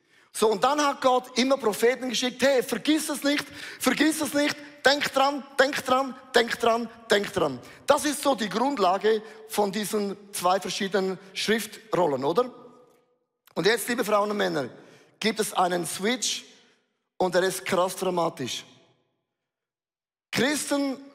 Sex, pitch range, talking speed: male, 205-270 Hz, 140 wpm